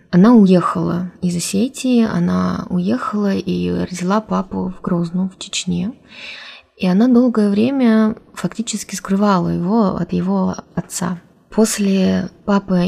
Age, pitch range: 20-39, 175-205 Hz